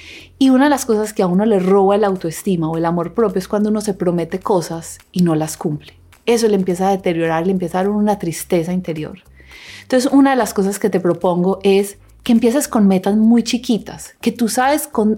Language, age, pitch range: Spanish, 30-49, 180-235 Hz